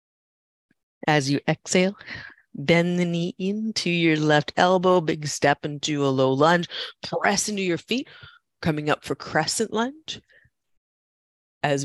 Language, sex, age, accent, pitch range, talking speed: English, female, 30-49, American, 150-230 Hz, 130 wpm